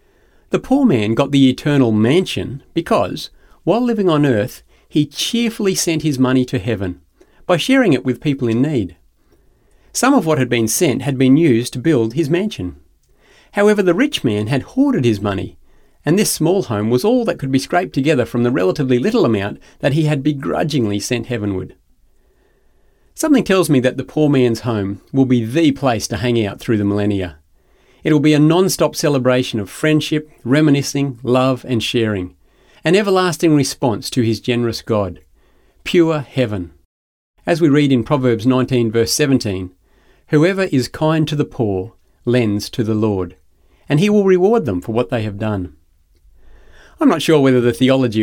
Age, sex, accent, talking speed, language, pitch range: 40-59, male, Australian, 175 wpm, English, 110-150 Hz